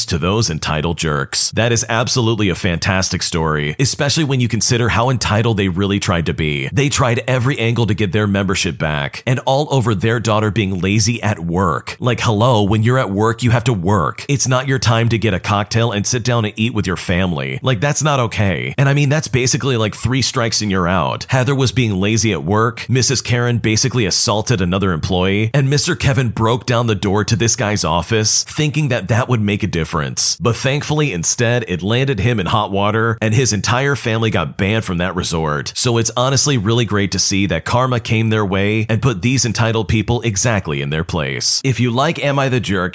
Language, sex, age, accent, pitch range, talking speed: English, male, 40-59, American, 100-125 Hz, 220 wpm